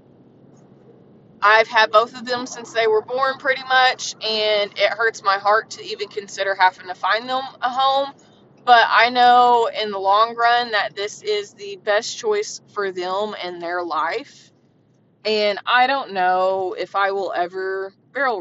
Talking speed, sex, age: 170 wpm, female, 20-39